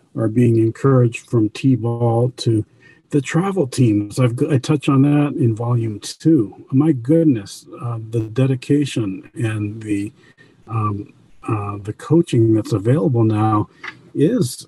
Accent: American